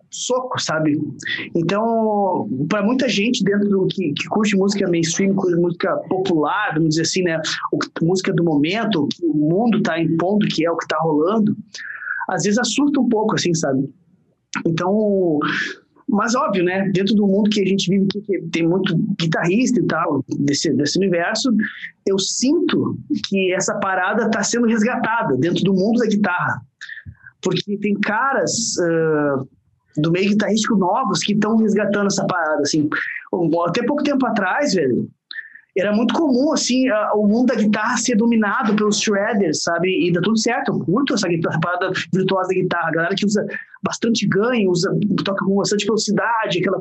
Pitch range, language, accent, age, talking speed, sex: 180-225 Hz, Portuguese, Brazilian, 20-39, 170 wpm, male